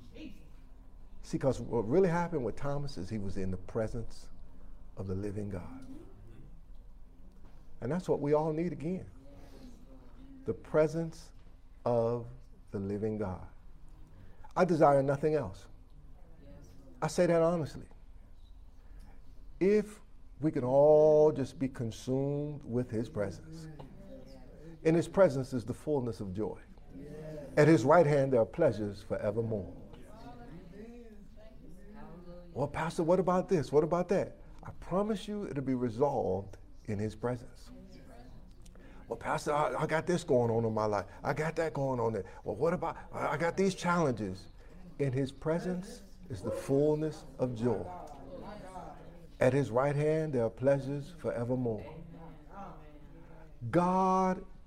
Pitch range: 95-155 Hz